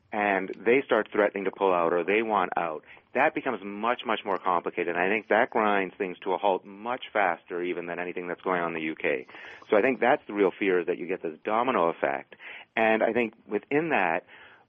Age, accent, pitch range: 40-59, American, 95-115 Hz